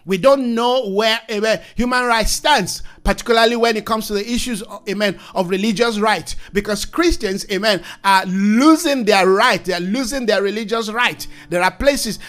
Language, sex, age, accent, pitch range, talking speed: English, male, 50-69, Nigerian, 205-260 Hz, 175 wpm